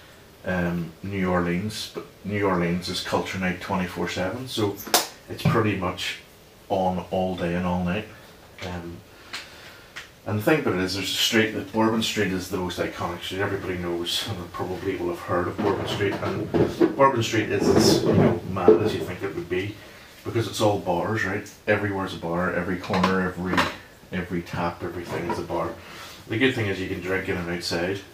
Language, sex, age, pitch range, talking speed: English, male, 30-49, 90-105 Hz, 190 wpm